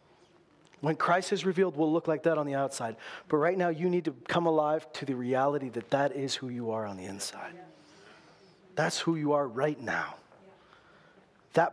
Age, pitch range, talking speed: 40-59, 135-165 Hz, 195 wpm